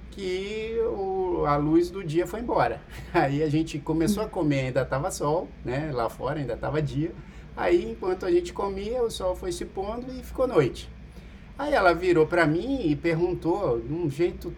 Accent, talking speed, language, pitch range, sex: Brazilian, 190 wpm, Portuguese, 150-245 Hz, male